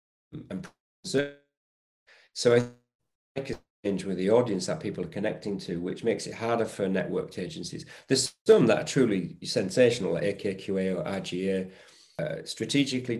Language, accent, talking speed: English, British, 155 wpm